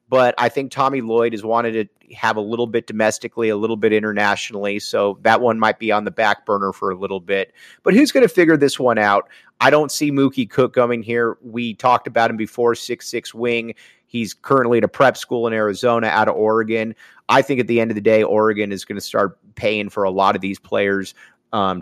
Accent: American